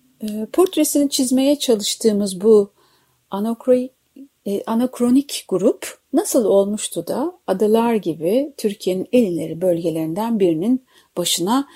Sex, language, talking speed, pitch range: female, Turkish, 80 wpm, 195-265 Hz